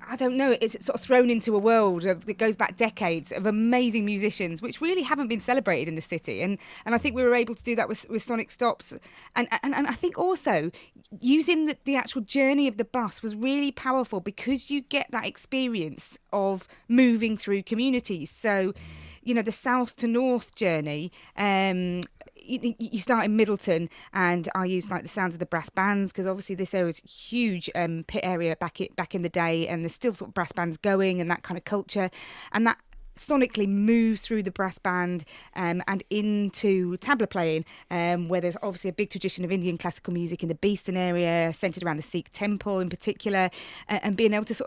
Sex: female